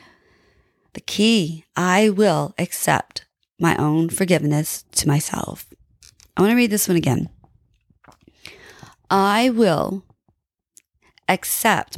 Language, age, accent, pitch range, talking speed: English, 30-49, American, 185-250 Hz, 100 wpm